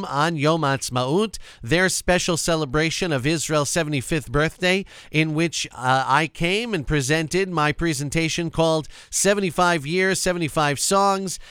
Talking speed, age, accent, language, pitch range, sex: 125 wpm, 40-59, American, English, 150-190 Hz, male